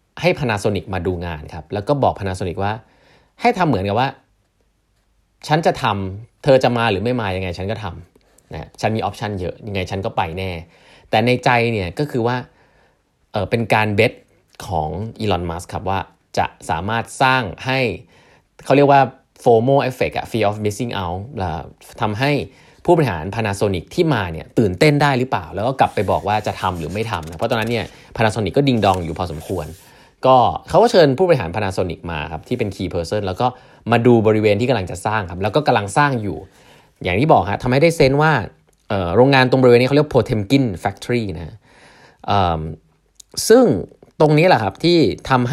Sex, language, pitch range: male, Thai, 95-130 Hz